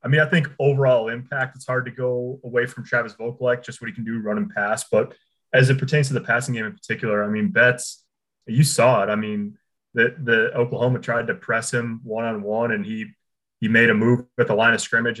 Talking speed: 240 wpm